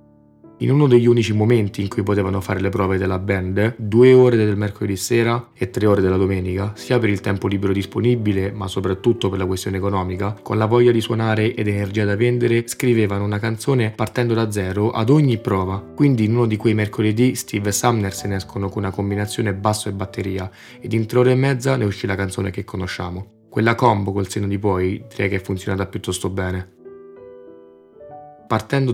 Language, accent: Italian, native